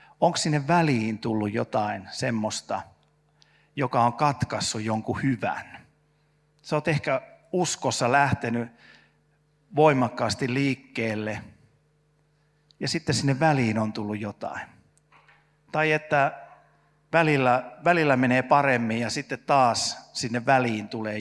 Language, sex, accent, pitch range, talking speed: Finnish, male, native, 115-150 Hz, 105 wpm